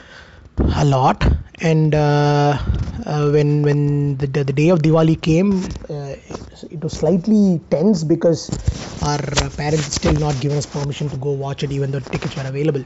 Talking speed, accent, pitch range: 165 wpm, Indian, 140-165 Hz